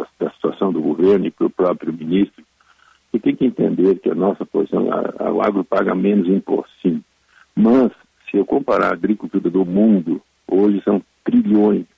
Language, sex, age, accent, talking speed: Portuguese, male, 60-79, Brazilian, 170 wpm